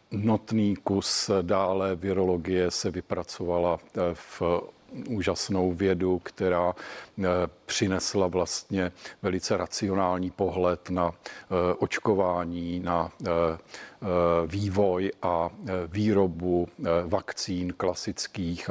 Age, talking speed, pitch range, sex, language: 50-69, 75 wpm, 90-100 Hz, male, Czech